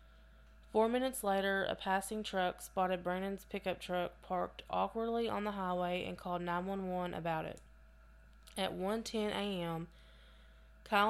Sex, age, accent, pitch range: female, 20-39, American, 175-200 Hz